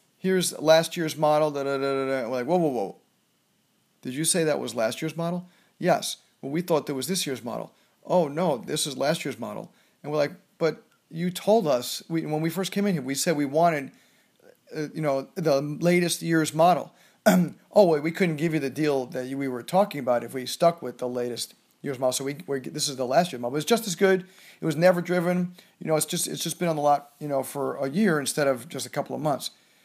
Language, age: English, 40-59